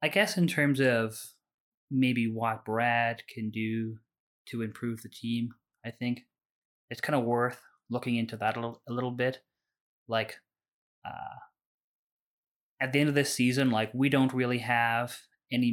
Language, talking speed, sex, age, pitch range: English, 155 wpm, male, 20-39, 115-125 Hz